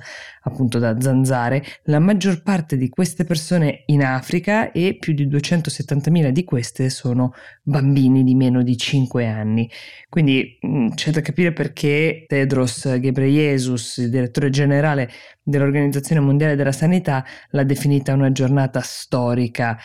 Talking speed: 125 wpm